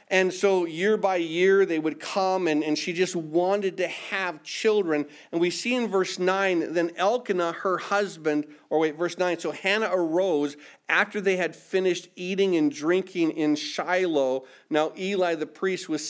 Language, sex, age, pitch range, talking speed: English, male, 40-59, 160-195 Hz, 175 wpm